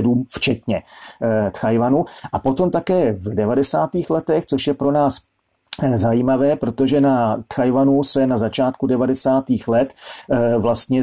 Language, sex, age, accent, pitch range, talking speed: Czech, male, 40-59, native, 120-135 Hz, 120 wpm